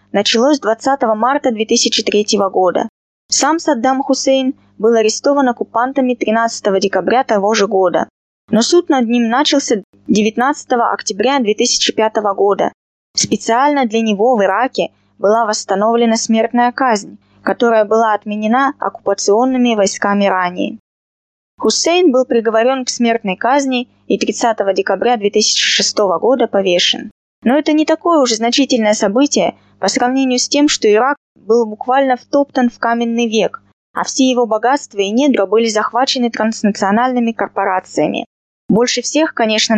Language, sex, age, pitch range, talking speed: Russian, female, 20-39, 210-265 Hz, 125 wpm